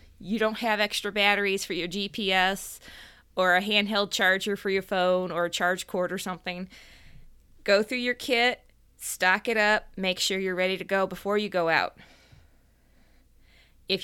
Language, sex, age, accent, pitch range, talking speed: English, female, 20-39, American, 180-220 Hz, 165 wpm